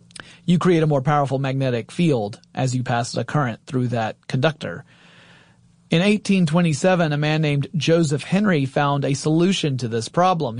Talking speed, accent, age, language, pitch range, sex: 160 wpm, American, 30-49, English, 135-170 Hz, male